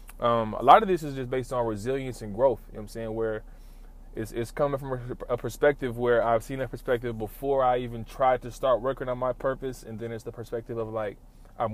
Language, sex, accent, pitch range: English, male, American, 110-130 Hz